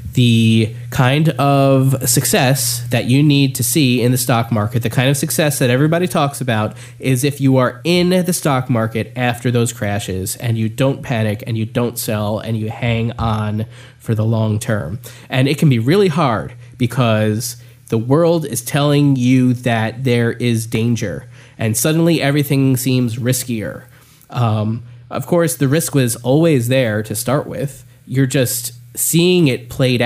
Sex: male